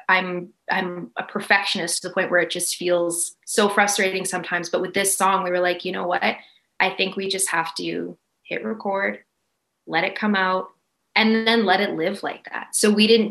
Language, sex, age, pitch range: English, female, 20-39, 175-205 Hz